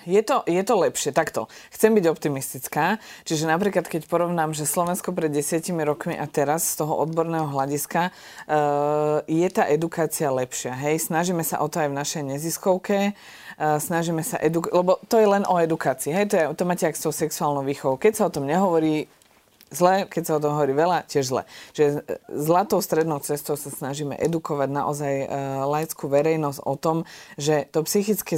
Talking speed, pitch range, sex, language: 185 wpm, 140-165 Hz, female, Slovak